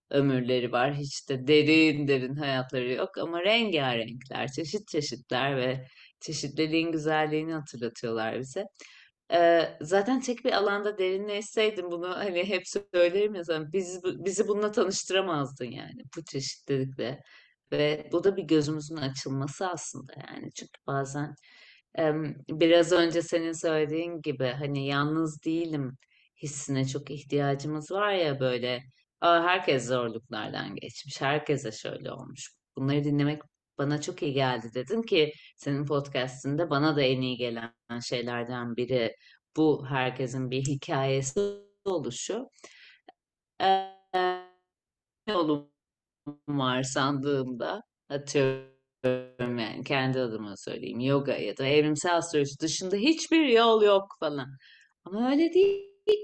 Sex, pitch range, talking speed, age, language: female, 130-175 Hz, 115 wpm, 30-49, Turkish